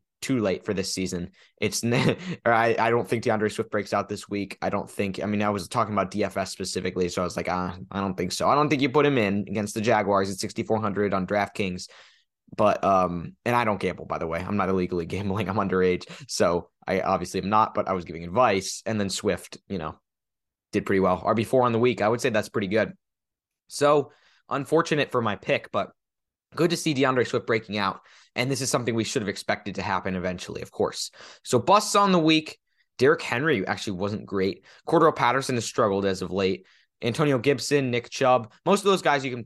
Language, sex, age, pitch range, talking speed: English, male, 10-29, 100-145 Hz, 225 wpm